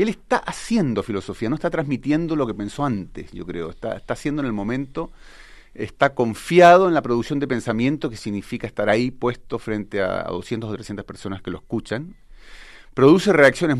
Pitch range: 105-140 Hz